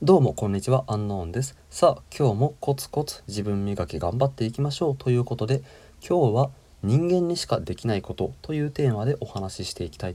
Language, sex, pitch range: Japanese, male, 95-135 Hz